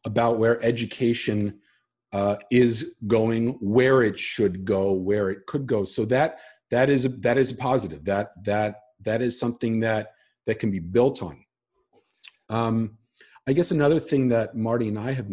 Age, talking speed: 40-59, 170 wpm